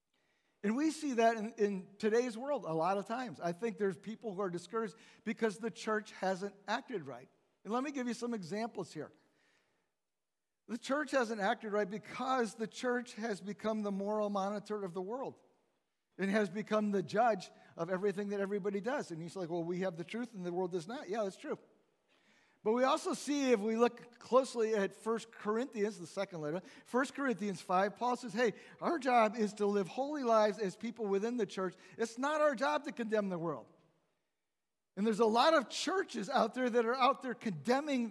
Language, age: English, 50-69